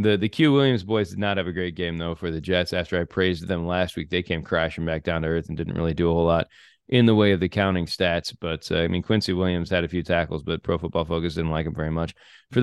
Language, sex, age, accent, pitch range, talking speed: English, male, 30-49, American, 90-110 Hz, 295 wpm